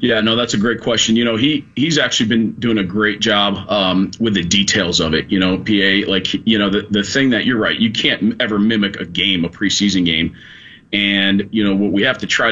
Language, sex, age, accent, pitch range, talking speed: English, male, 40-59, American, 95-110 Hz, 245 wpm